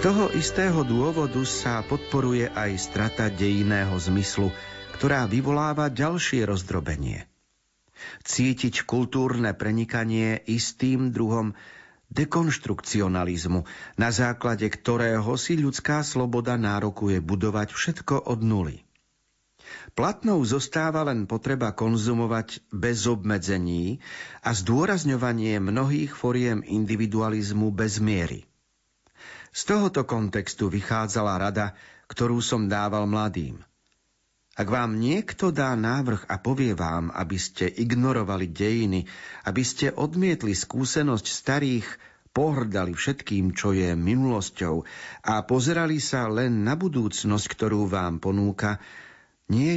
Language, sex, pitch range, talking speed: Slovak, male, 100-130 Hz, 100 wpm